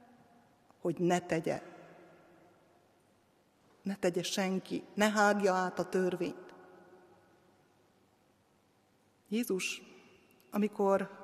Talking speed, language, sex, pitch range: 70 wpm, Hungarian, female, 180-235 Hz